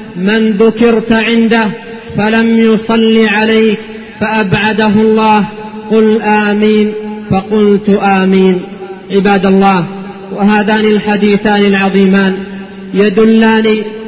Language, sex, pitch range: Arabic, male, 215-225 Hz